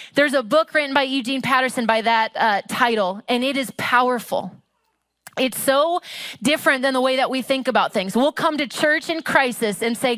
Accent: American